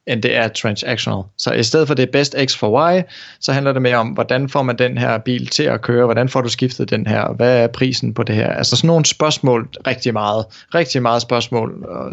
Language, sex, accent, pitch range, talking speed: Danish, male, native, 115-135 Hz, 245 wpm